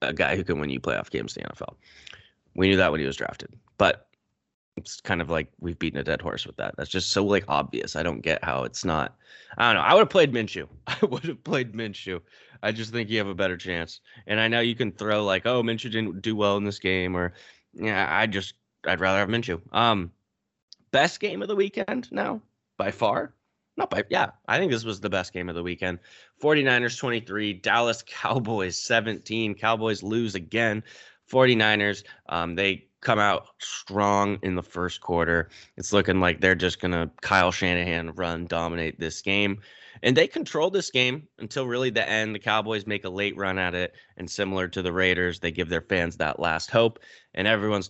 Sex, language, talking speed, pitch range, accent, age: male, English, 210 wpm, 90-110 Hz, American, 20-39